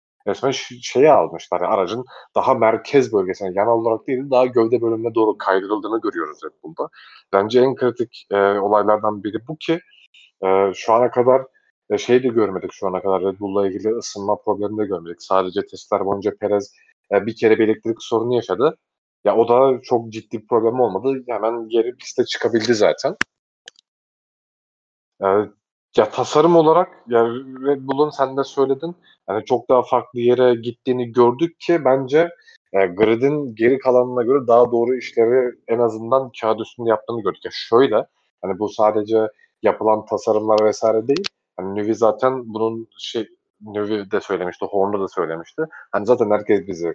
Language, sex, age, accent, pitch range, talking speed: Turkish, male, 30-49, native, 105-135 Hz, 160 wpm